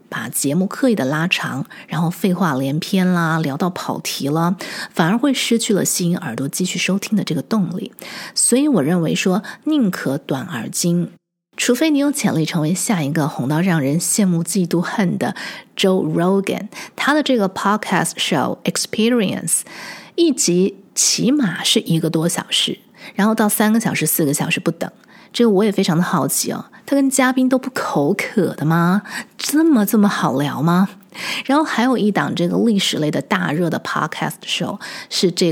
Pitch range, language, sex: 170-230 Hz, Chinese, female